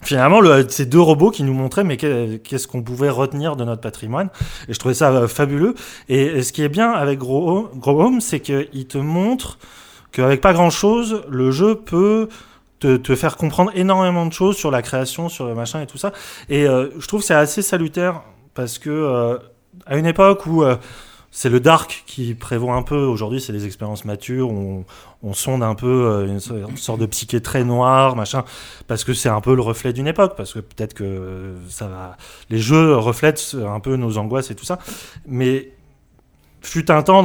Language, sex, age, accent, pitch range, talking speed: French, male, 20-39, French, 115-155 Hz, 205 wpm